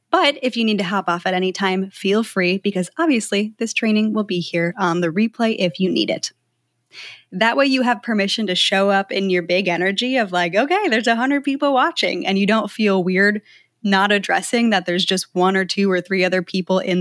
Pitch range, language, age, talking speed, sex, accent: 185-230 Hz, English, 20-39, 220 wpm, female, American